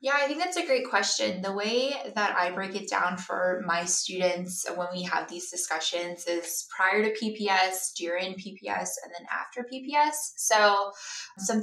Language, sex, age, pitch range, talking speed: English, female, 20-39, 175-210 Hz, 175 wpm